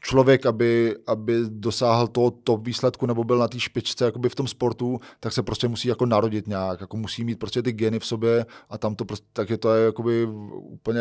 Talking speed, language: 215 wpm, Czech